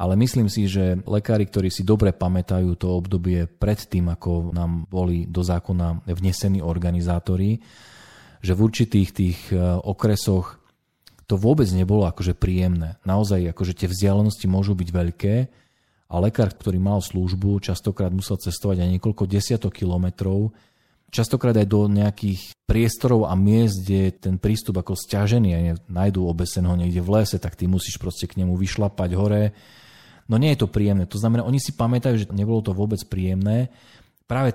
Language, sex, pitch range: Slovak, male, 90-105 Hz